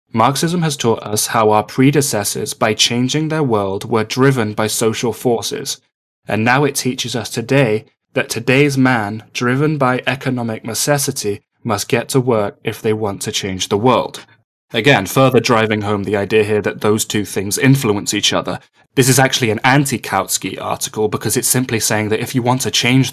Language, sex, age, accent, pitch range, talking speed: English, male, 10-29, British, 105-125 Hz, 180 wpm